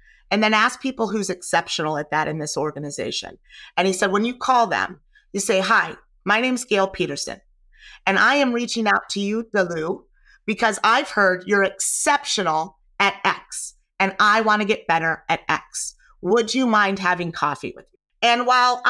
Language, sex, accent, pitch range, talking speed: English, female, American, 185-230 Hz, 180 wpm